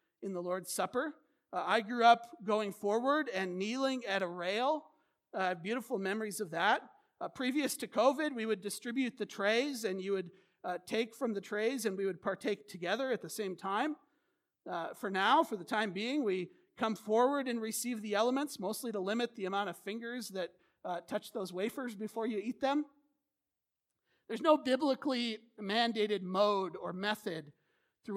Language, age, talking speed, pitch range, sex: English, 50-69, 180 wpm, 195-250 Hz, male